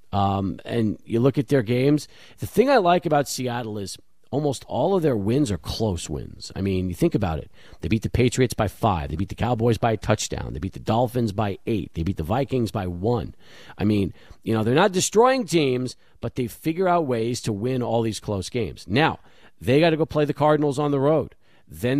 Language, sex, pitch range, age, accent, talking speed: English, male, 105-150 Hz, 50-69, American, 230 wpm